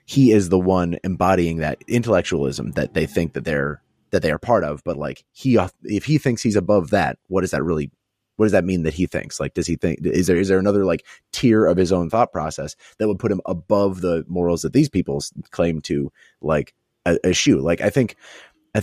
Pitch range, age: 85-105 Hz, 30-49